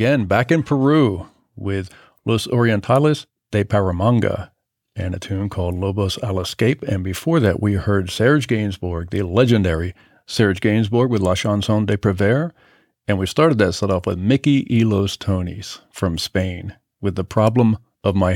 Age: 50-69